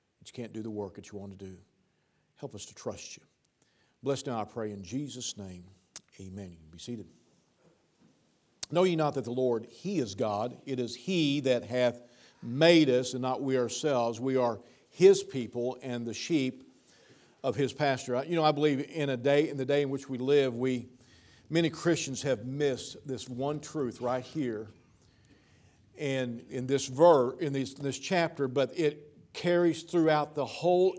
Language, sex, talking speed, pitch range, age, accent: English, male, 185 wpm, 125-155 Hz, 50-69, American